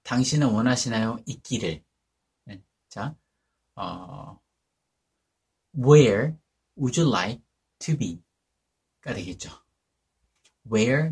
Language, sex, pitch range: Korean, male, 90-140 Hz